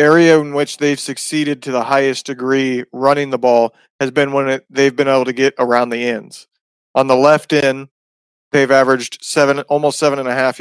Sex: male